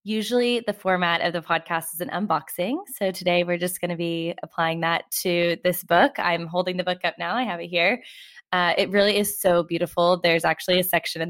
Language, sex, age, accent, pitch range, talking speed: English, female, 20-39, American, 170-190 Hz, 225 wpm